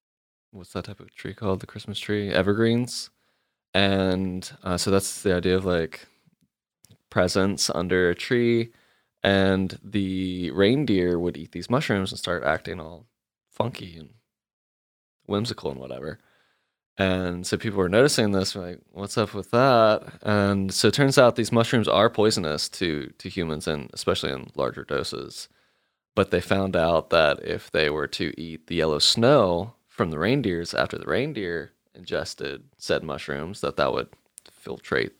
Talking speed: 155 wpm